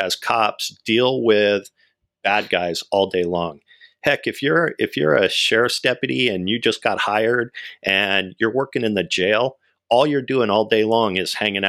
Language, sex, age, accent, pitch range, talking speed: English, male, 50-69, American, 95-125 Hz, 185 wpm